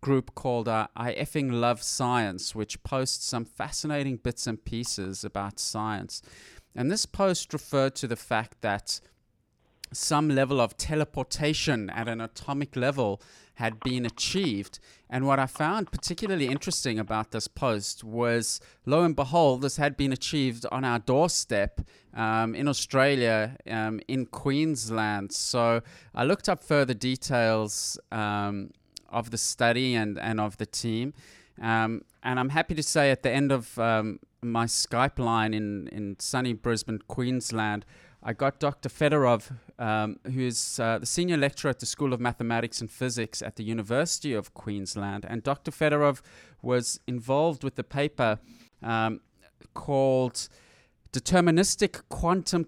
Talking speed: 145 wpm